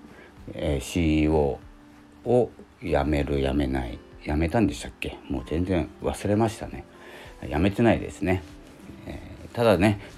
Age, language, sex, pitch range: 40-59, Japanese, male, 80-100 Hz